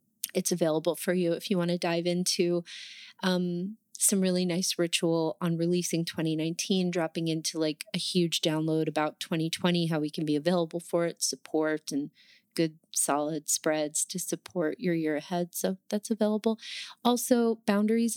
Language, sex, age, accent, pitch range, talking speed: English, female, 30-49, American, 175-220 Hz, 160 wpm